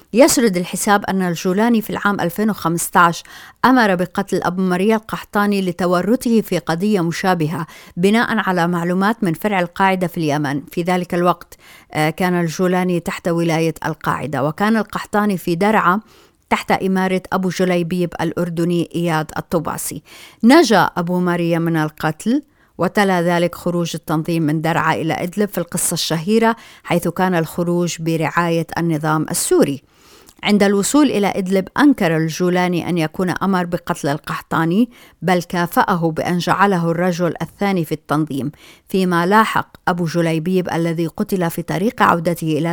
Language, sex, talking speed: Arabic, female, 130 wpm